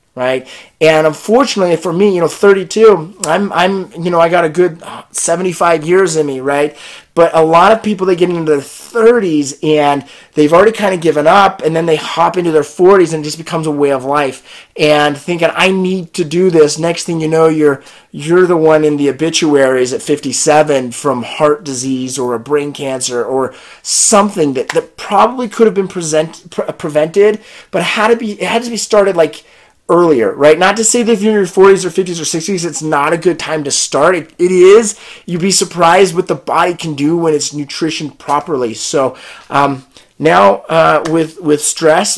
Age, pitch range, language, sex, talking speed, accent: 30-49, 150-180 Hz, English, male, 210 wpm, American